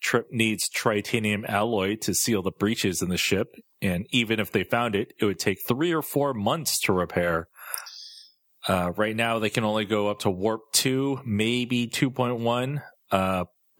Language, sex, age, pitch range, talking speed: English, male, 30-49, 95-115 Hz, 170 wpm